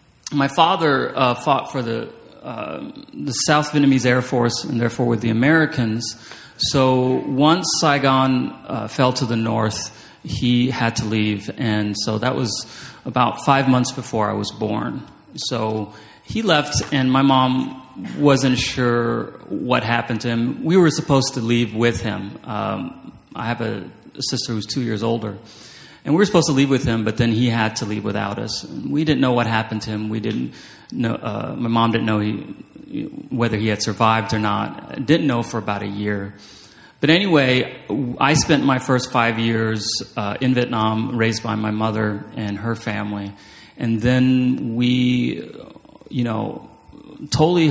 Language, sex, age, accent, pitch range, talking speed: English, male, 30-49, American, 110-130 Hz, 175 wpm